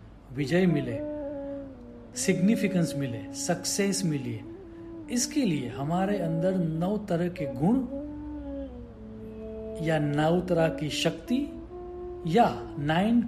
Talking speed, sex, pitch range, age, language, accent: 95 wpm, male, 150-230 Hz, 50-69, English, Indian